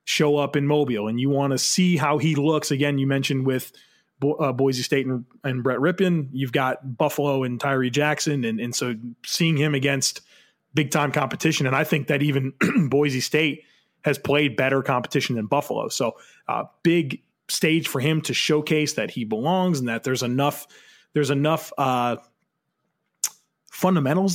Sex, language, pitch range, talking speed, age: male, English, 130-160 Hz, 175 wpm, 30-49